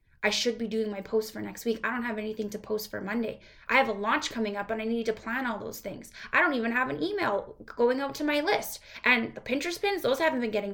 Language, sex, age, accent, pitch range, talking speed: English, female, 10-29, American, 210-250 Hz, 280 wpm